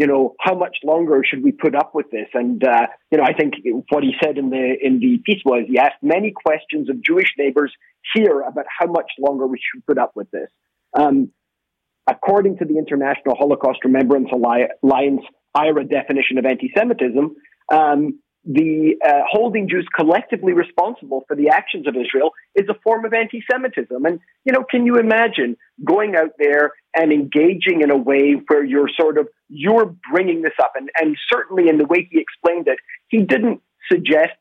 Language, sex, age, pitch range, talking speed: English, male, 40-59, 140-225 Hz, 190 wpm